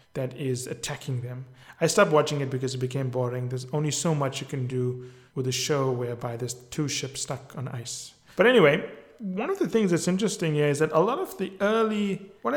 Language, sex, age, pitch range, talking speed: English, male, 30-49, 140-185 Hz, 220 wpm